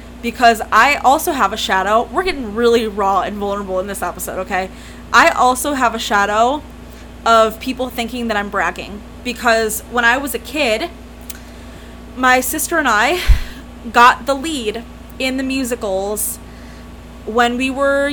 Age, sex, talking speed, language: 20-39, female, 150 wpm, English